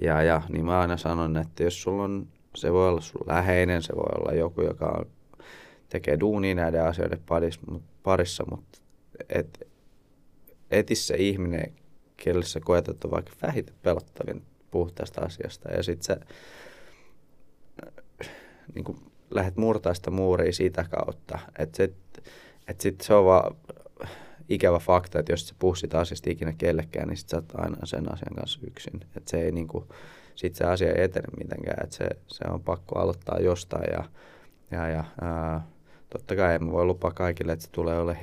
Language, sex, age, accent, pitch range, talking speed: Finnish, male, 20-39, native, 80-90 Hz, 160 wpm